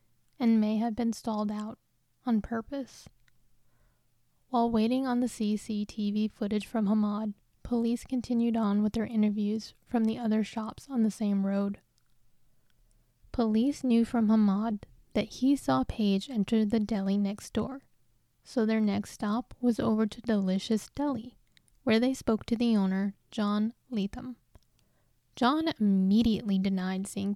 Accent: American